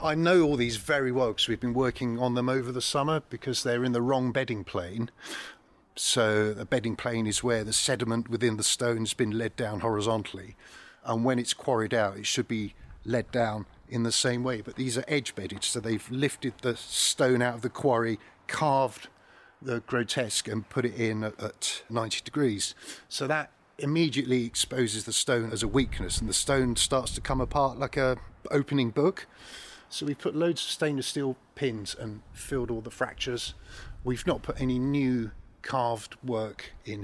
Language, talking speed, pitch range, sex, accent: English, 190 wpm, 110-135 Hz, male, British